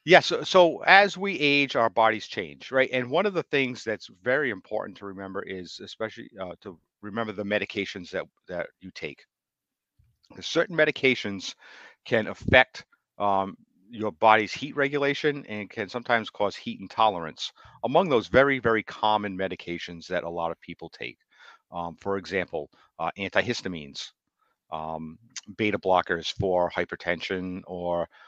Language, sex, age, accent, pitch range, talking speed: English, male, 50-69, American, 85-110 Hz, 145 wpm